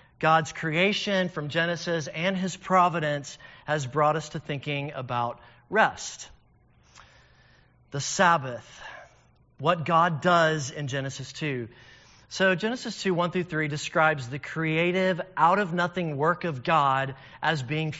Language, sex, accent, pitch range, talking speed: English, male, American, 150-185 Hz, 125 wpm